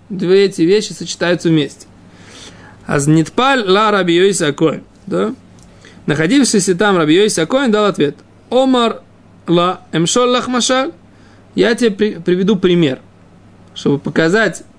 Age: 20-39